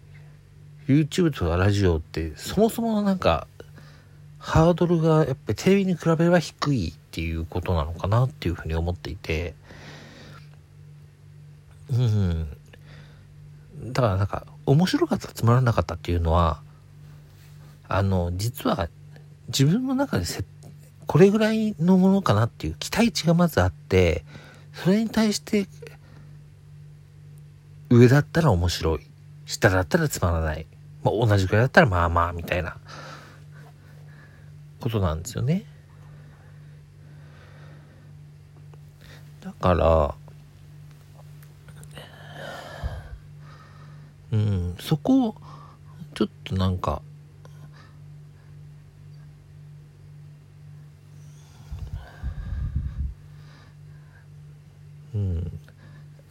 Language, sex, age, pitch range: Japanese, male, 50-69, 105-150 Hz